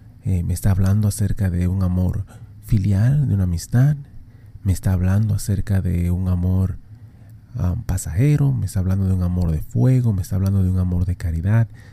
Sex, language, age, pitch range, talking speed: male, Spanish, 30-49, 95-115 Hz, 180 wpm